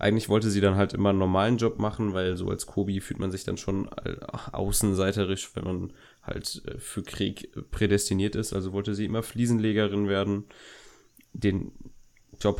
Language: German